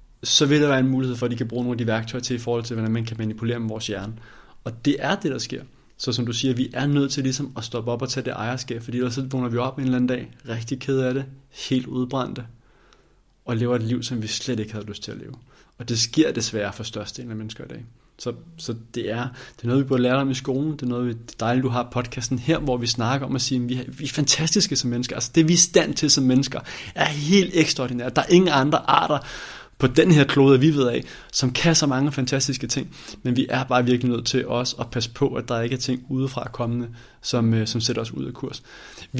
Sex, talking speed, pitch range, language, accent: male, 275 wpm, 115-135 Hz, Danish, native